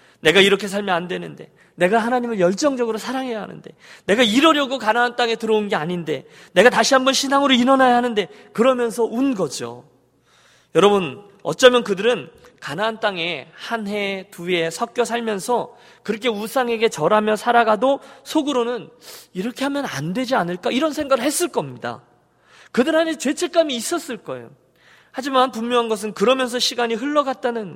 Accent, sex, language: native, male, Korean